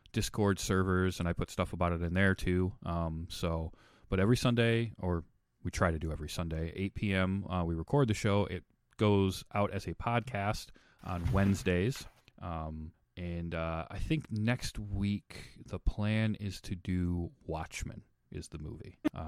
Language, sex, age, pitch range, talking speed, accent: English, male, 30-49, 85-105 Hz, 170 wpm, American